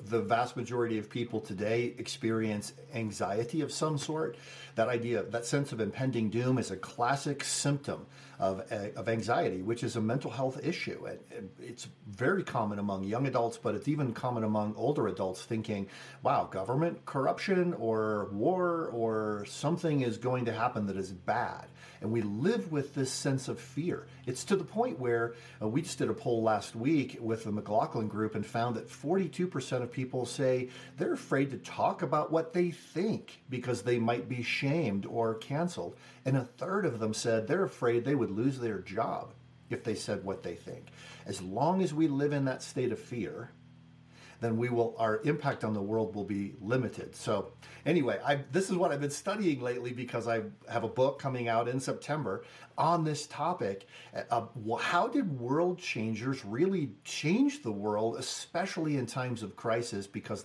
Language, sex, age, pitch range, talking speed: English, male, 50-69, 110-145 Hz, 185 wpm